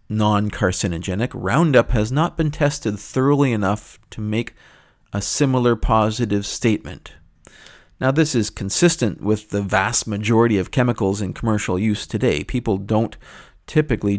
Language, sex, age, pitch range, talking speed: English, male, 40-59, 95-120 Hz, 130 wpm